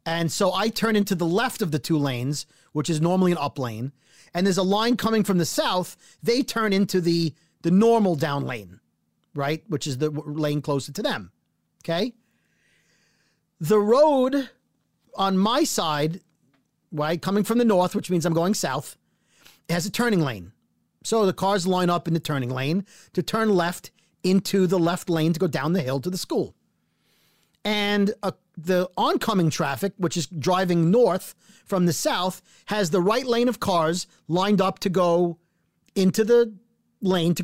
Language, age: English, 40-59